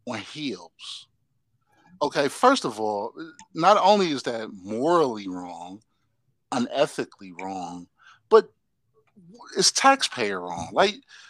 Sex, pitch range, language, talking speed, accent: male, 120-185 Hz, English, 100 wpm, American